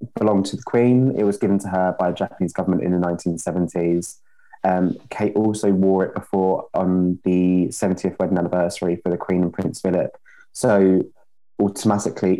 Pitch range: 90-110 Hz